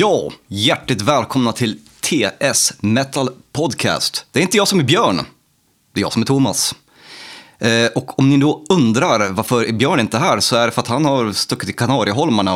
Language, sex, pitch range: Swedish, male, 95-135 Hz